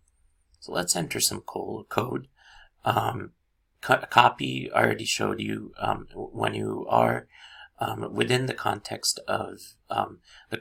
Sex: male